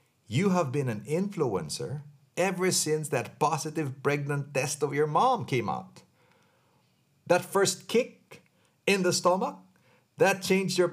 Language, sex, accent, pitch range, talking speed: English, male, Filipino, 125-165 Hz, 135 wpm